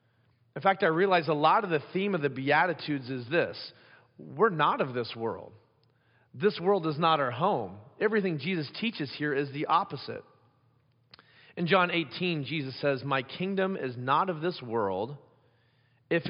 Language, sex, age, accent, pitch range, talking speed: English, male, 40-59, American, 125-160 Hz, 165 wpm